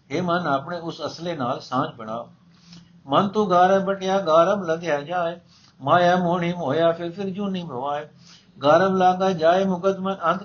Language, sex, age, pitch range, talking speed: Punjabi, male, 60-79, 145-175 Hz, 155 wpm